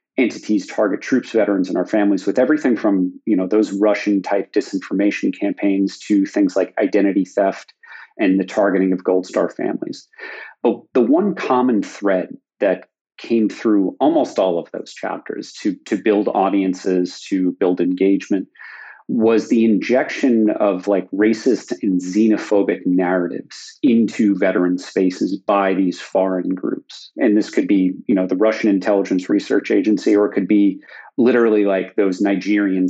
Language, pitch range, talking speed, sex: English, 95-110 Hz, 150 wpm, male